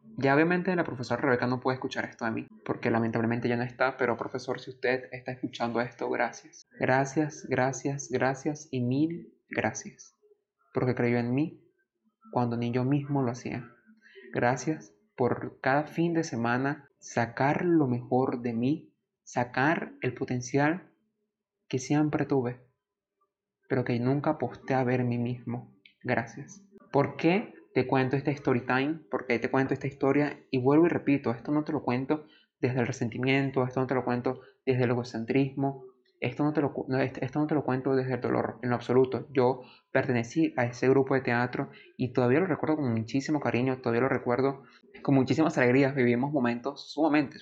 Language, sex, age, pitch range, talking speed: Spanish, male, 30-49, 125-150 Hz, 175 wpm